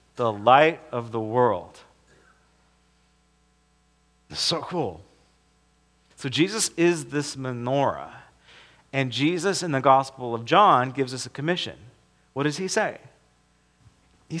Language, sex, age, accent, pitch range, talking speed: English, male, 40-59, American, 110-145 Hz, 115 wpm